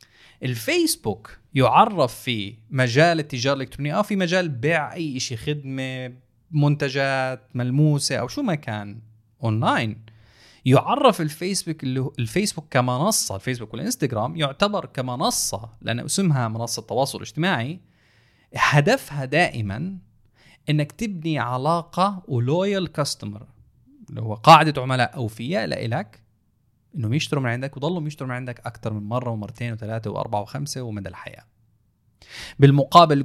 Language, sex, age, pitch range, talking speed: Arabic, male, 20-39, 110-150 Hz, 115 wpm